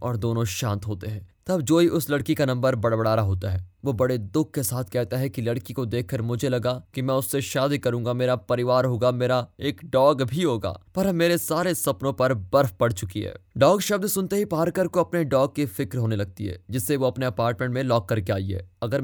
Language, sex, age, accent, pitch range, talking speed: Hindi, male, 20-39, native, 115-155 Hz, 75 wpm